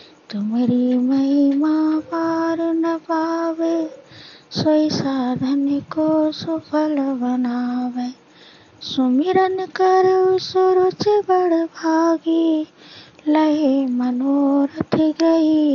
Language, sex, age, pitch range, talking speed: Hindi, female, 20-39, 255-330 Hz, 70 wpm